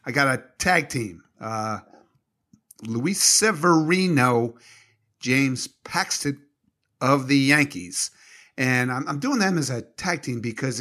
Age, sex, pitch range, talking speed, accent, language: 50-69, male, 120-165 Hz, 130 wpm, American, English